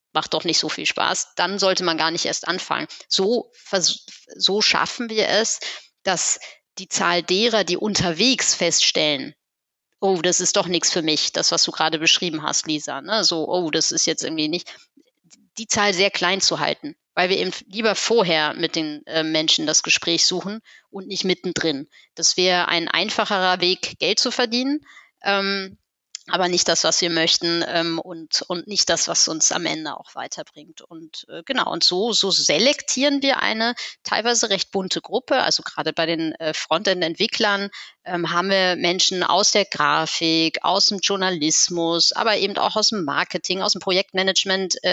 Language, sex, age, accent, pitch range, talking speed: German, female, 30-49, German, 175-220 Hz, 175 wpm